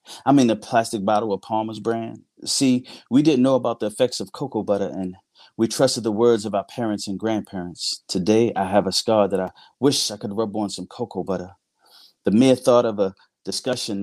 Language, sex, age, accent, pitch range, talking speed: English, male, 30-49, American, 105-125 Hz, 215 wpm